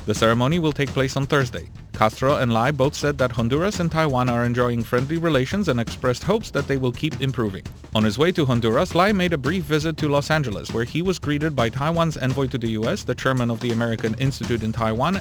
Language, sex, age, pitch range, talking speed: English, male, 40-59, 110-145 Hz, 235 wpm